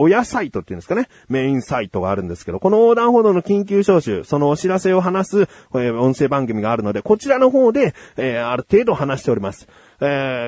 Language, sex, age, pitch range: Japanese, male, 30-49, 115-180 Hz